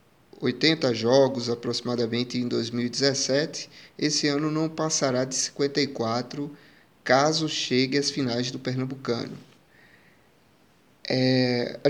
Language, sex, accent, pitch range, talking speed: English, male, Brazilian, 130-160 Hz, 90 wpm